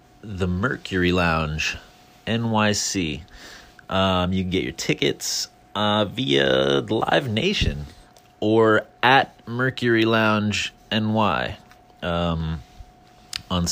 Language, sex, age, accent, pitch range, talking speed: English, male, 30-49, American, 90-115 Hz, 95 wpm